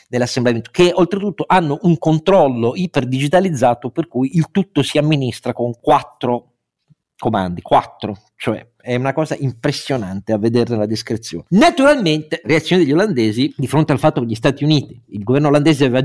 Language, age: Italian, 50-69